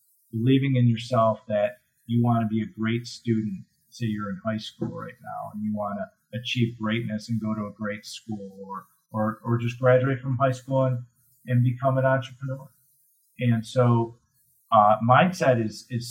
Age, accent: 40-59, American